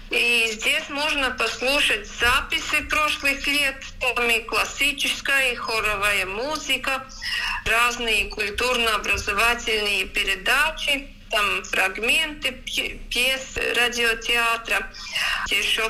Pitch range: 215-265 Hz